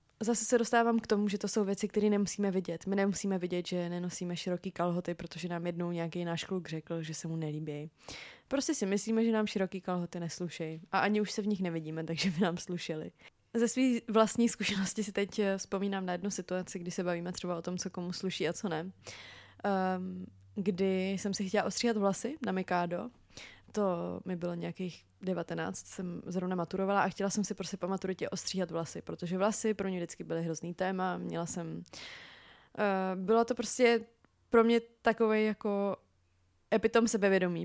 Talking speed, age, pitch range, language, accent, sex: 185 wpm, 20-39, 175-210 Hz, Czech, native, female